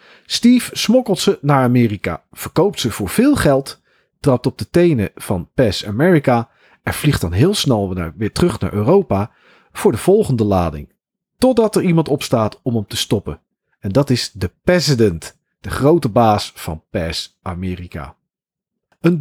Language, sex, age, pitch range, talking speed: Dutch, male, 40-59, 110-175 Hz, 160 wpm